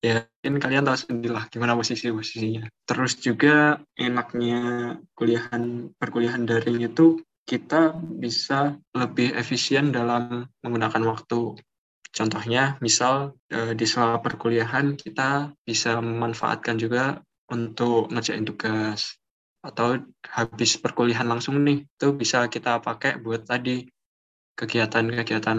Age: 20-39